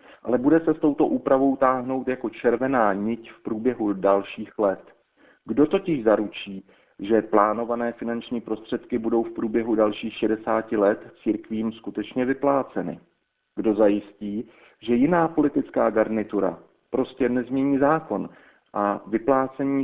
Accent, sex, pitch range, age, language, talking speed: native, male, 110-135 Hz, 40-59, Czech, 125 wpm